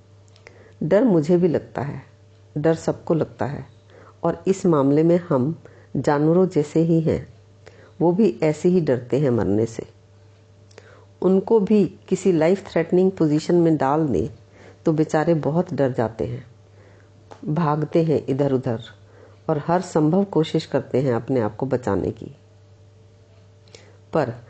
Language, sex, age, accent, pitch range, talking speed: Hindi, female, 50-69, native, 110-170 Hz, 140 wpm